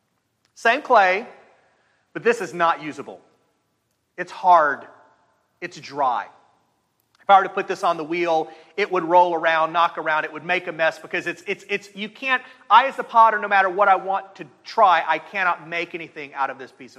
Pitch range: 170-215 Hz